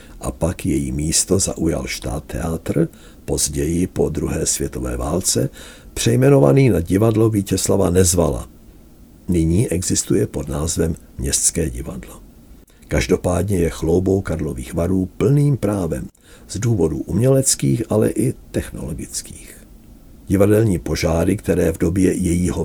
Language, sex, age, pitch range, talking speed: Czech, male, 60-79, 80-100 Hz, 110 wpm